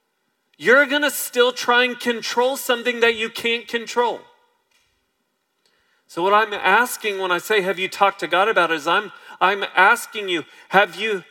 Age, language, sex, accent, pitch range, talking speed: 40-59, English, male, American, 200-275 Hz, 170 wpm